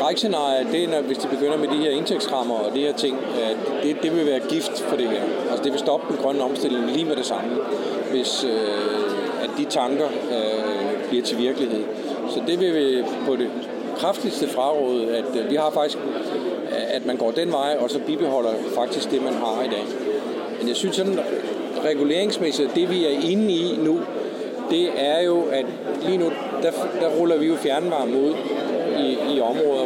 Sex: male